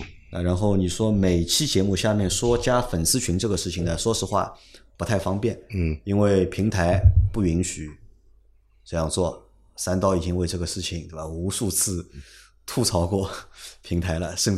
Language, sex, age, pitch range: Chinese, male, 30-49, 85-100 Hz